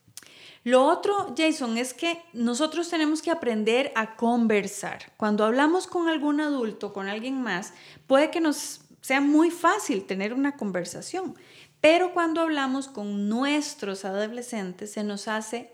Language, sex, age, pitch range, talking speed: Spanish, female, 10-29, 215-295 Hz, 140 wpm